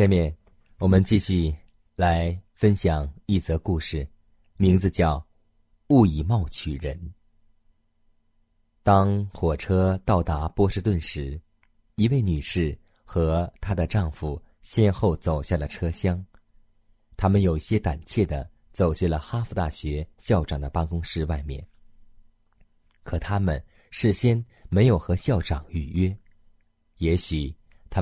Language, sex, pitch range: Chinese, male, 80-105 Hz